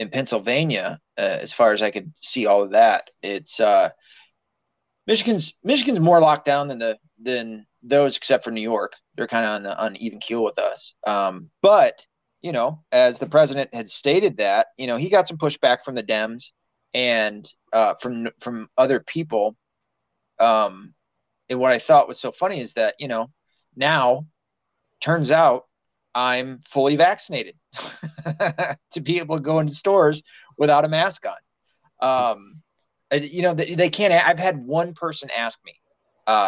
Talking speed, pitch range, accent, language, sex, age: 170 wpm, 115-160 Hz, American, English, male, 30-49